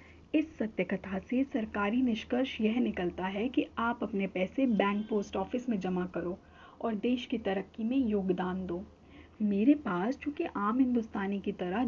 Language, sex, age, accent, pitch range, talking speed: Hindi, female, 40-59, native, 190-270 Hz, 165 wpm